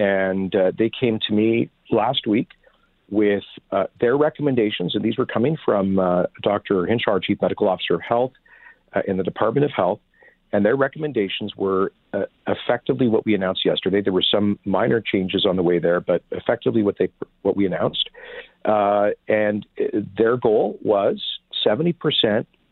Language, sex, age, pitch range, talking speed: English, male, 50-69, 100-135 Hz, 165 wpm